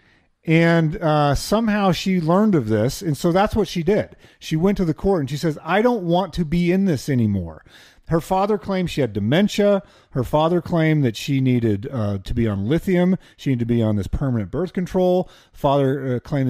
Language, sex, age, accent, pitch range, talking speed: English, male, 40-59, American, 130-190 Hz, 210 wpm